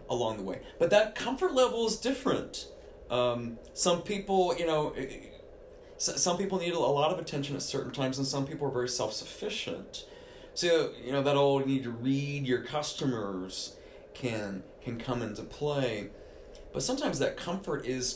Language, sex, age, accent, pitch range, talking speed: English, male, 30-49, American, 120-195 Hz, 170 wpm